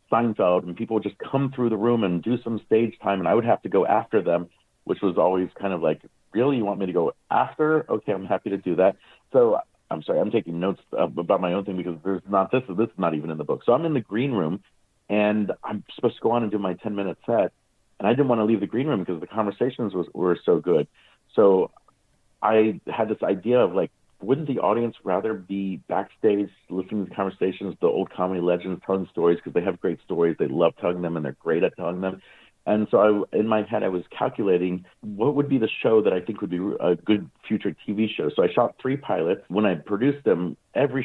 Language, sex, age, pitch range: English, male, 40-59, 90-110 Hz